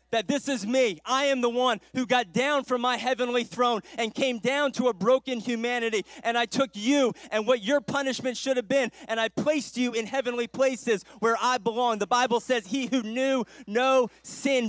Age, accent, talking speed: 20-39, American, 210 wpm